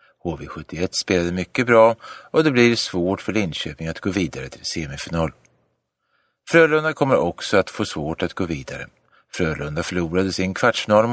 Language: Swedish